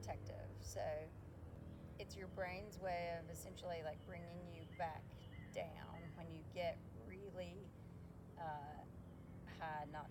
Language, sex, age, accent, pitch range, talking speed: English, female, 30-49, American, 105-180 Hz, 115 wpm